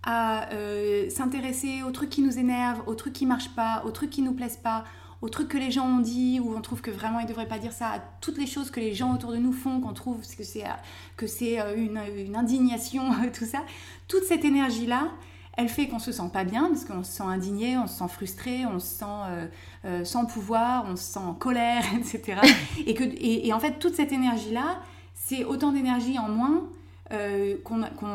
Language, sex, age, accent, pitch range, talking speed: French, female, 30-49, French, 215-260 Hz, 230 wpm